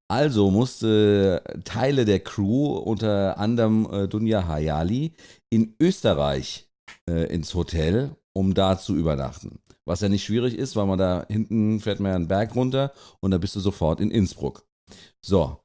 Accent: German